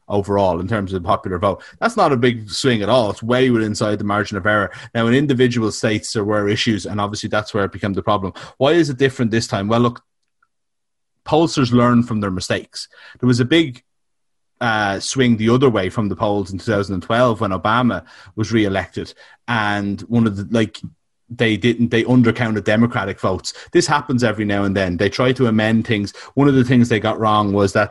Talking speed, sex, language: 215 wpm, male, English